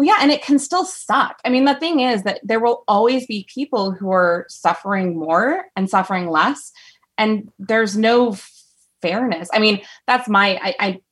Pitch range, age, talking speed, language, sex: 185-235 Hz, 20-39, 185 wpm, English, female